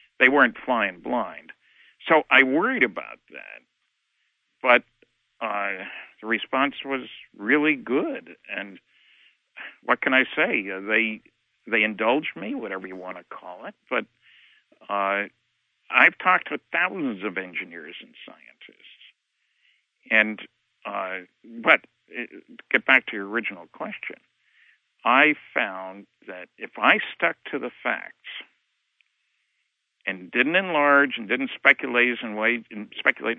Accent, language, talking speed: American, English, 120 wpm